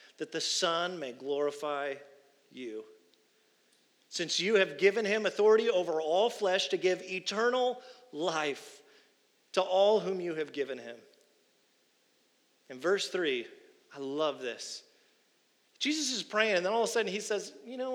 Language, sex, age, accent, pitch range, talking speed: English, male, 40-59, American, 160-240 Hz, 150 wpm